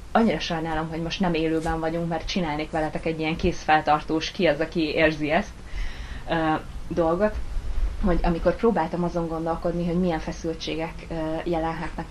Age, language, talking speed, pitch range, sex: 20-39, Hungarian, 150 wpm, 160-175 Hz, female